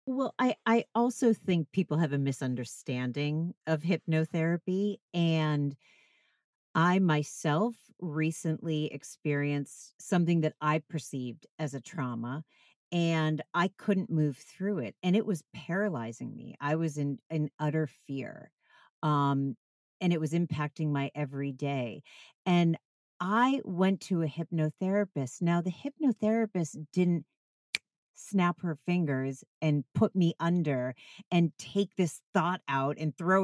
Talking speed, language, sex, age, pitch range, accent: 130 wpm, English, female, 40-59, 150-195 Hz, American